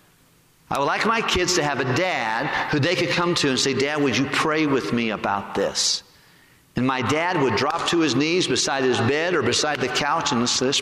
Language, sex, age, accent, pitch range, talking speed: English, male, 50-69, American, 125-165 Hz, 240 wpm